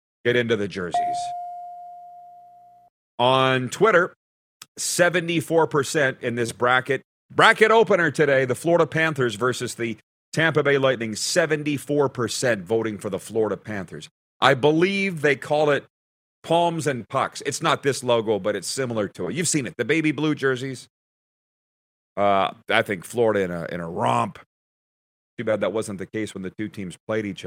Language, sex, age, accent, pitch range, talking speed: English, male, 40-59, American, 110-150 Hz, 155 wpm